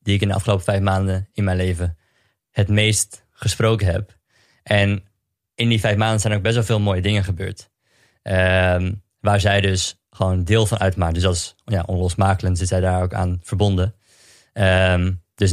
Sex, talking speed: male, 180 wpm